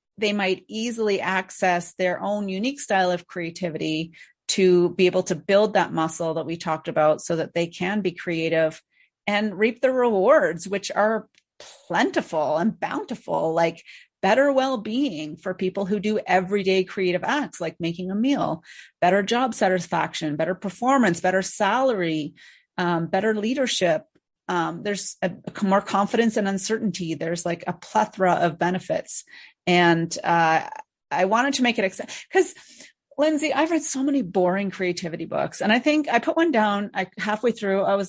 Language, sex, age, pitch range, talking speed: English, female, 30-49, 175-245 Hz, 160 wpm